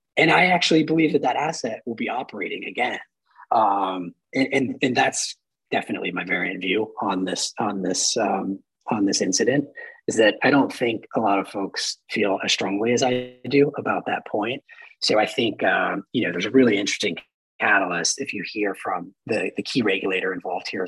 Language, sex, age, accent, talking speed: English, male, 30-49, American, 195 wpm